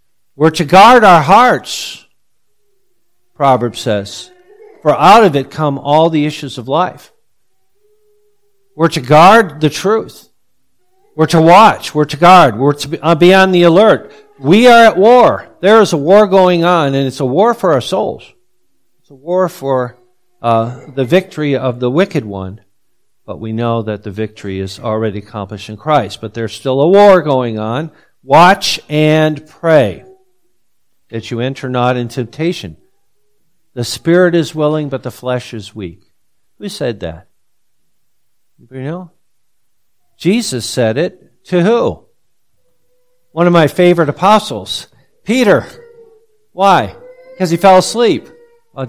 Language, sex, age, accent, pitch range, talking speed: English, male, 50-69, American, 125-195 Hz, 145 wpm